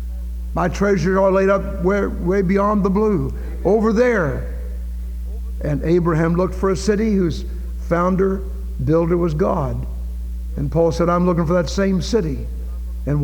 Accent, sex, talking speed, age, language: American, male, 150 wpm, 60-79, English